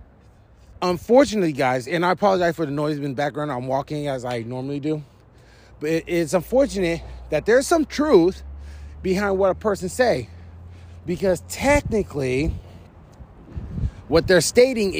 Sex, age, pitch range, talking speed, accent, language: male, 30-49, 130-190 Hz, 135 wpm, American, English